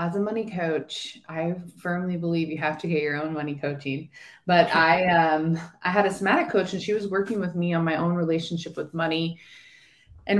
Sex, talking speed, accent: female, 210 wpm, American